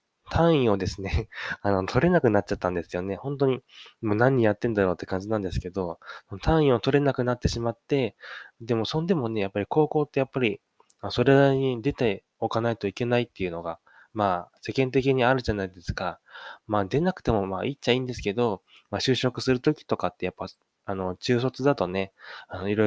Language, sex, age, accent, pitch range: Japanese, male, 20-39, native, 100-130 Hz